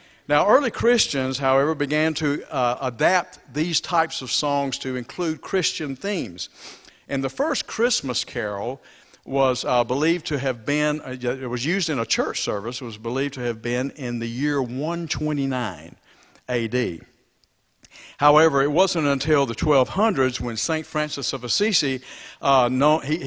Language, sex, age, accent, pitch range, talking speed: English, male, 60-79, American, 125-160 Hz, 150 wpm